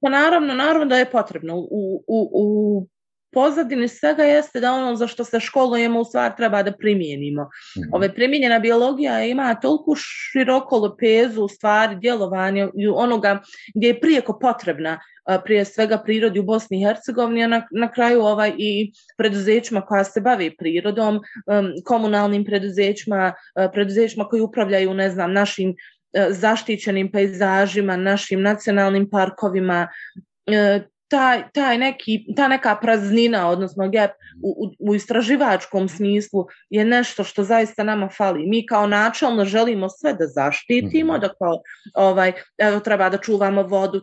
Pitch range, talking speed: 195-235 Hz, 135 wpm